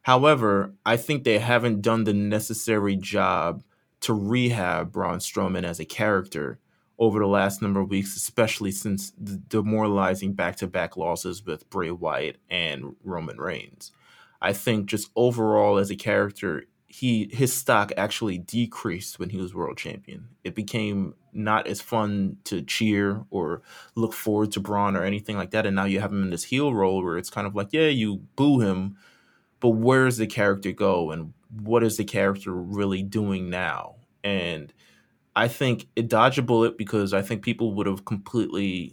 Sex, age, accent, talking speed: male, 20-39, American, 175 wpm